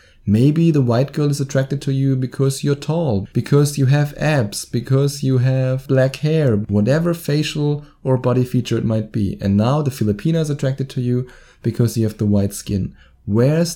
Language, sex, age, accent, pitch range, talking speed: English, male, 20-39, German, 105-135 Hz, 190 wpm